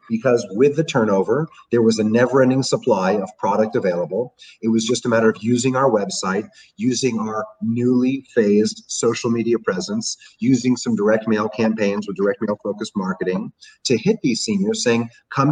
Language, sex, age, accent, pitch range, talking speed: English, male, 40-59, American, 110-170 Hz, 175 wpm